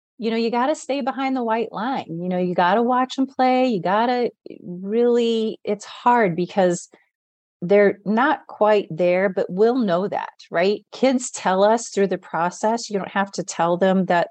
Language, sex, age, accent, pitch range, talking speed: English, female, 30-49, American, 175-230 Hz, 195 wpm